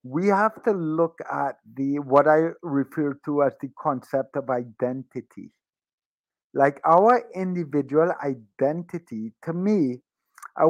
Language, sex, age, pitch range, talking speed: English, male, 50-69, 135-185 Hz, 125 wpm